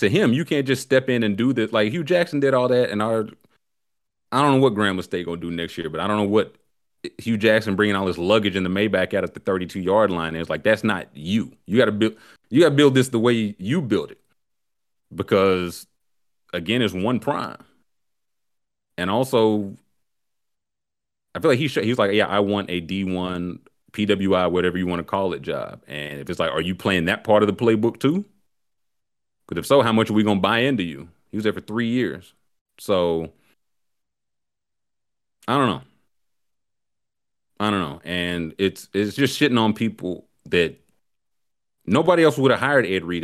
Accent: American